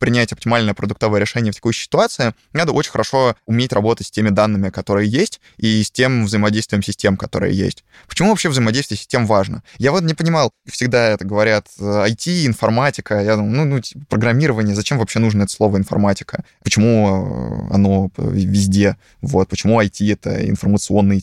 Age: 20-39